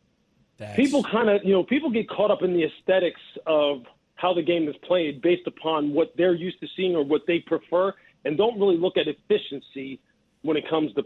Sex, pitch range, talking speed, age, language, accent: male, 155-190 Hz, 205 wpm, 40-59, English, American